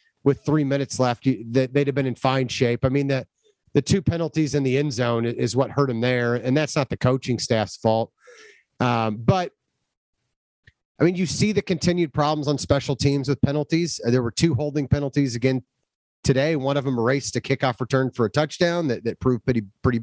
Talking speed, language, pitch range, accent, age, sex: 205 wpm, English, 125-160 Hz, American, 30-49, male